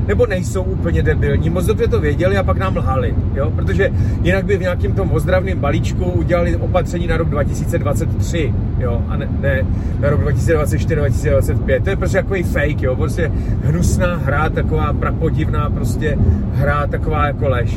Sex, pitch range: male, 95-110 Hz